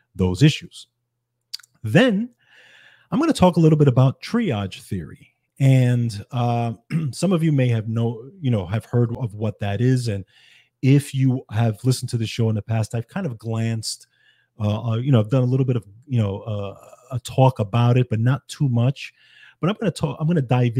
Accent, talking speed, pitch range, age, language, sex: American, 210 wpm, 110-130 Hz, 30-49, English, male